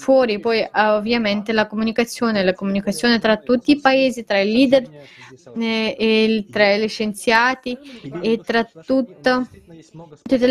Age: 20-39